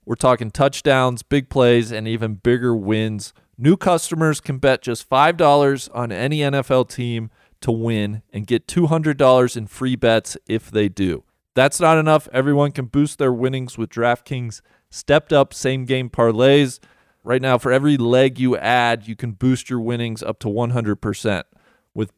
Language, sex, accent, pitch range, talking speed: English, male, American, 115-140 Hz, 160 wpm